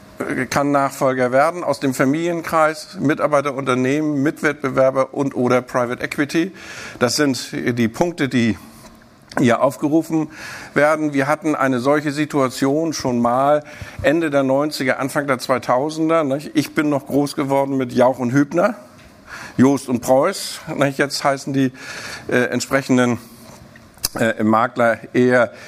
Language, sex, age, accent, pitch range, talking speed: German, male, 50-69, German, 125-145 Hz, 125 wpm